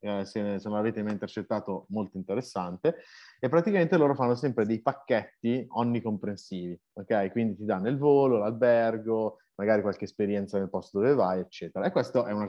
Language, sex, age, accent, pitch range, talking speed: Italian, male, 30-49, native, 105-140 Hz, 170 wpm